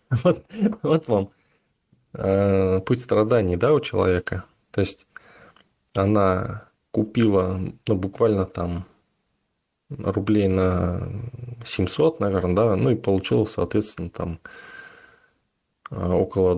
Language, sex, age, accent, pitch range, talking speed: Russian, male, 20-39, native, 95-115 Hz, 95 wpm